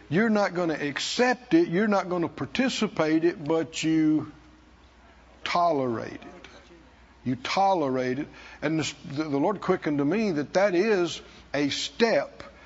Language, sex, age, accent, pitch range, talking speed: English, male, 60-79, American, 155-230 Hz, 145 wpm